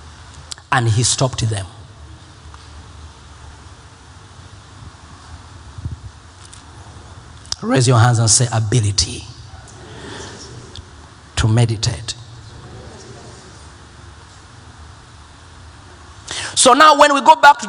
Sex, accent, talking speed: male, South African, 65 wpm